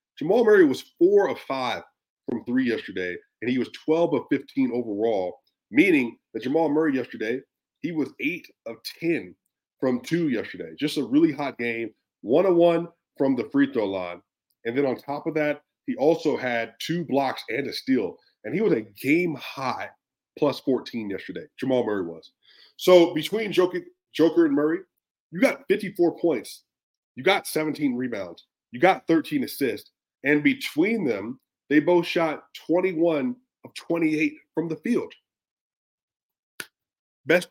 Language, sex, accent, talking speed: English, male, American, 160 wpm